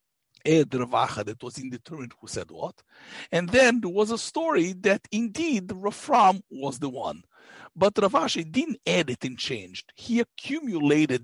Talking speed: 150 wpm